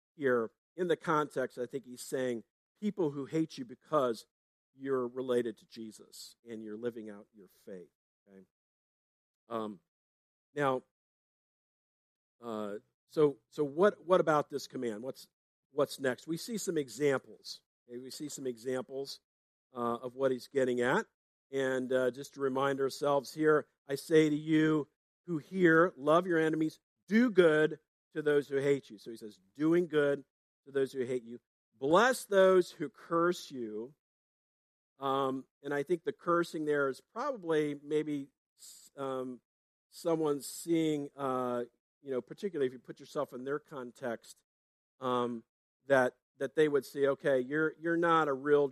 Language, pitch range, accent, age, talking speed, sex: English, 115-150 Hz, American, 50-69, 155 wpm, male